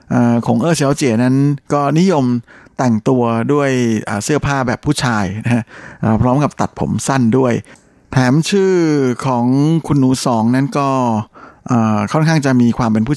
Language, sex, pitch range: Thai, male, 110-135 Hz